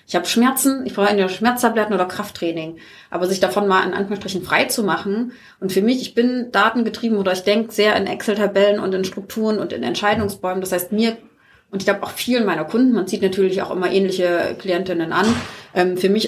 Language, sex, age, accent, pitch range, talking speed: German, female, 30-49, German, 185-225 Hz, 205 wpm